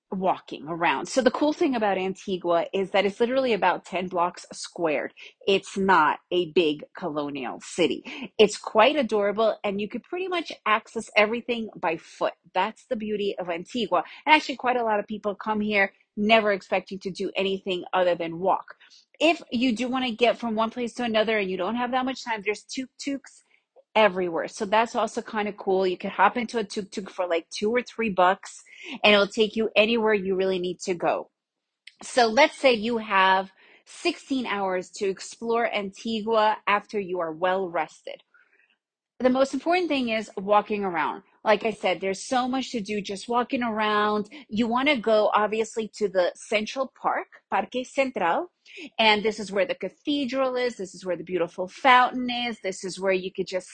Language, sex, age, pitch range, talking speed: English, female, 30-49, 190-245 Hz, 190 wpm